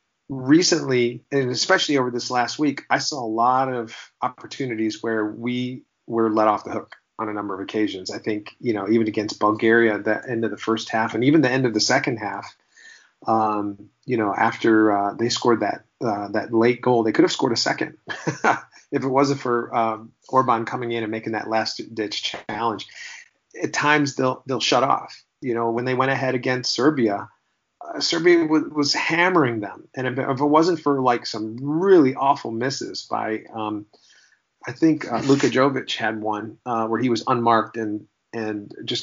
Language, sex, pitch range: English, male, 110-130 Hz